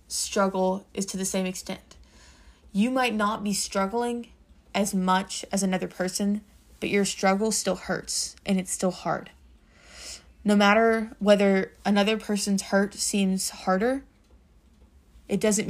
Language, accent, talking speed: English, American, 135 wpm